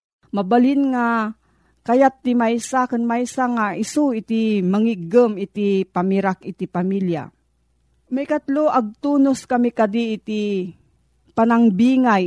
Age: 40-59